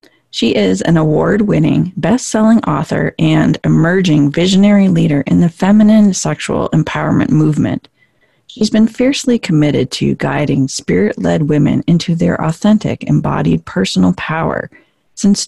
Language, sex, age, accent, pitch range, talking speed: English, female, 40-59, American, 155-210 Hz, 120 wpm